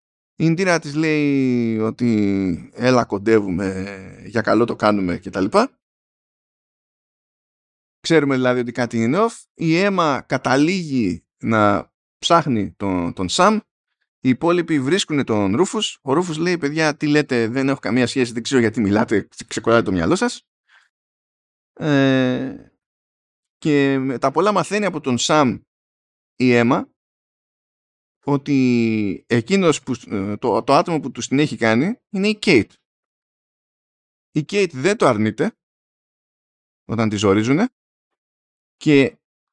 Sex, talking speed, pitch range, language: male, 125 wpm, 105-155 Hz, Greek